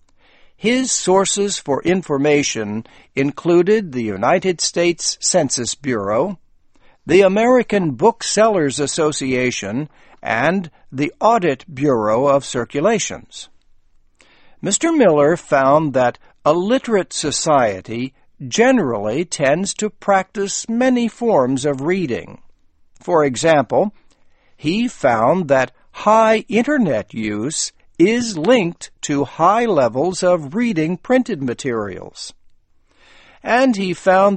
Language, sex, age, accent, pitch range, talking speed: English, male, 60-79, American, 130-195 Hz, 95 wpm